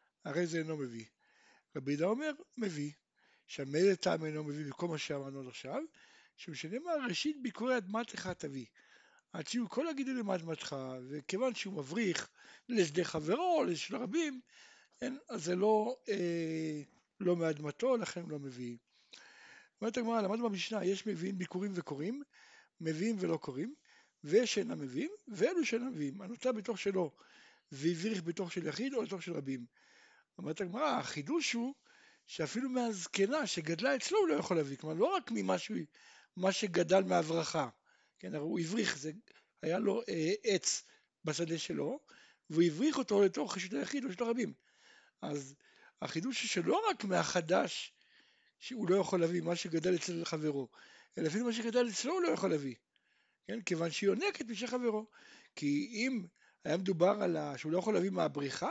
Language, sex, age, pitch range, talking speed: Hebrew, male, 60-79, 160-245 Hz, 140 wpm